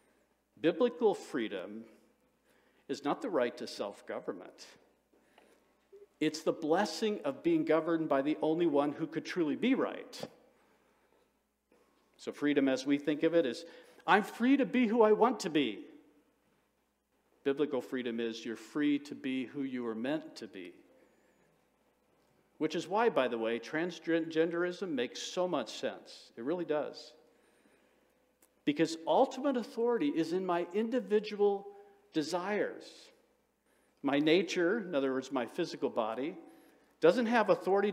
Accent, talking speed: American, 135 wpm